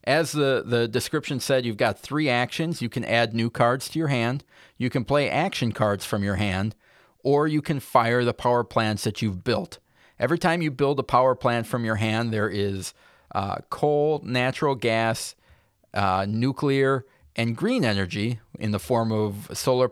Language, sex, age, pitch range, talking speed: English, male, 40-59, 110-135 Hz, 185 wpm